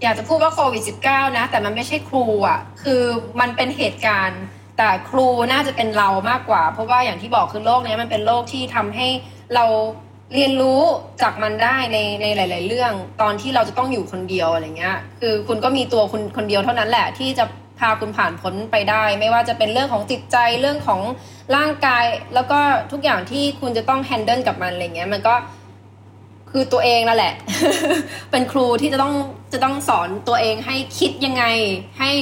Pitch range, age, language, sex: 210-265 Hz, 20-39, Thai, female